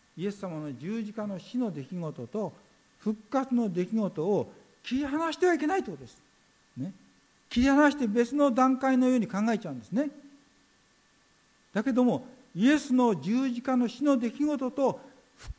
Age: 50-69